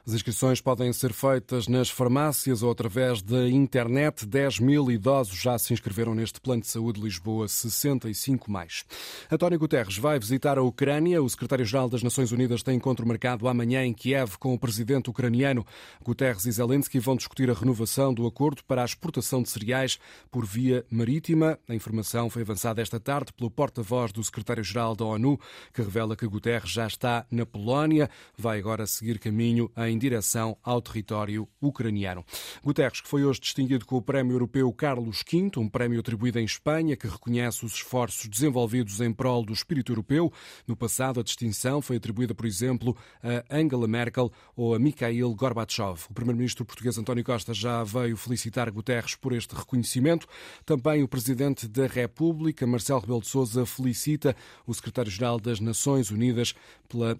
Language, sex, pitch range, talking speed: Portuguese, male, 115-130 Hz, 170 wpm